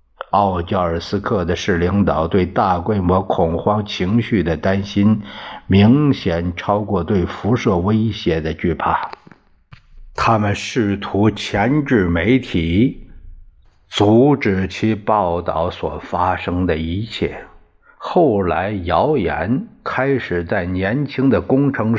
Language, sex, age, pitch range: Chinese, male, 60-79, 90-115 Hz